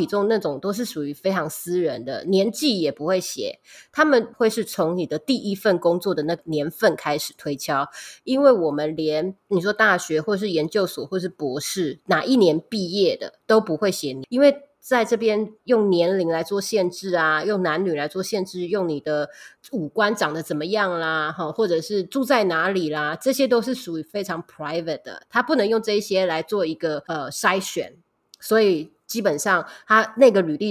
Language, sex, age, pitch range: Chinese, female, 20-39, 170-220 Hz